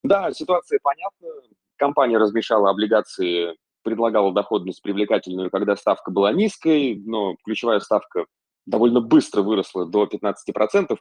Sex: male